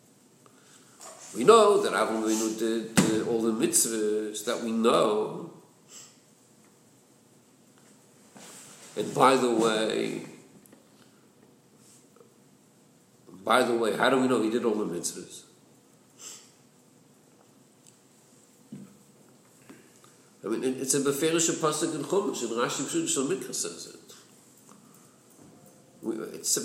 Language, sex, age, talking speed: English, male, 60-79, 95 wpm